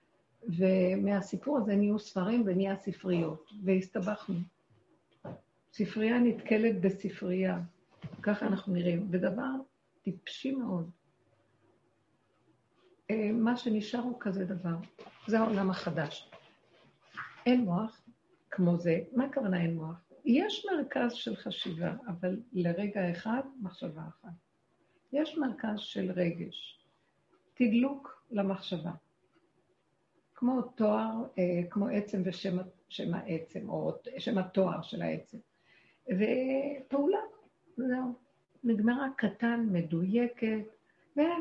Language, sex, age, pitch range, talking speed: Hebrew, female, 60-79, 185-245 Hz, 95 wpm